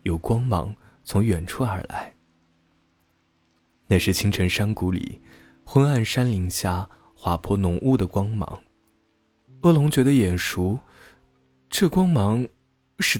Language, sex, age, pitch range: Chinese, male, 20-39, 85-110 Hz